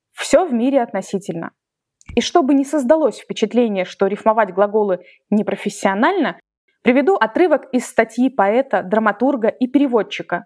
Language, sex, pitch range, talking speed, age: Russian, female, 200-255 Hz, 120 wpm, 20-39